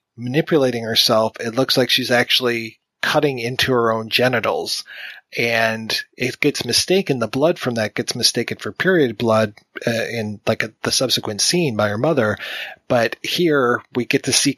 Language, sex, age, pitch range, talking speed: English, male, 30-49, 115-135 Hz, 165 wpm